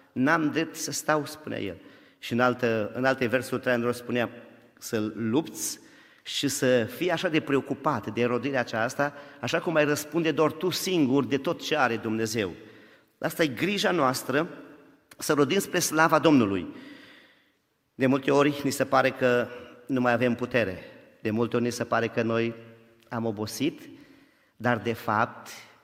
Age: 40-59